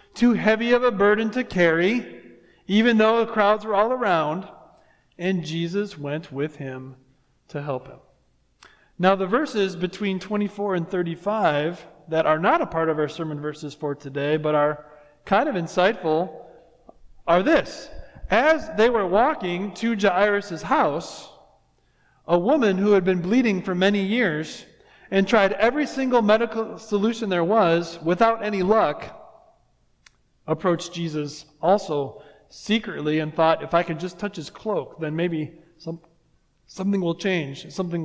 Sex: male